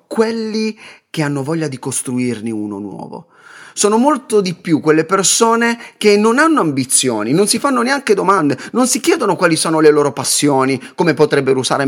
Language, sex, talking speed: Italian, male, 170 wpm